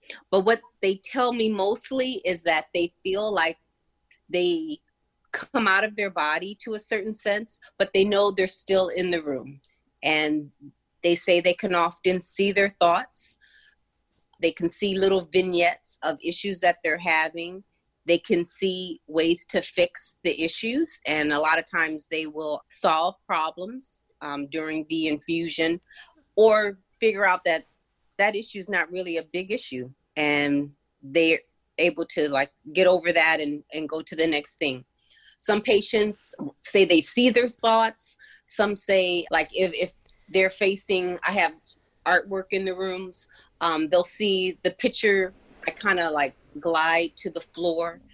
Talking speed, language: 160 wpm, English